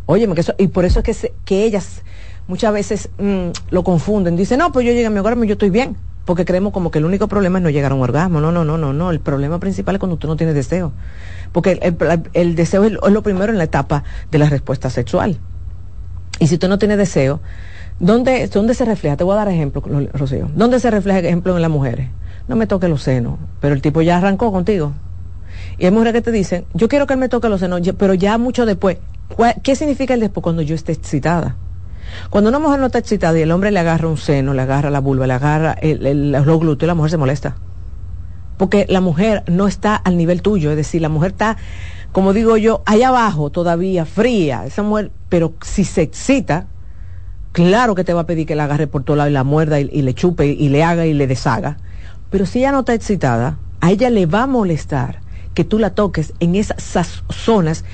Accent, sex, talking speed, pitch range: American, female, 240 wpm, 135-200 Hz